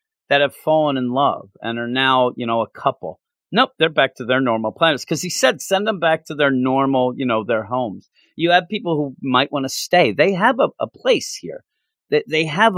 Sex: male